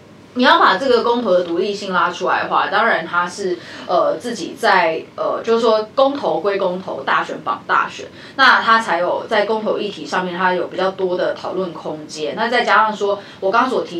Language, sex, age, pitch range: Chinese, female, 20-39, 190-270 Hz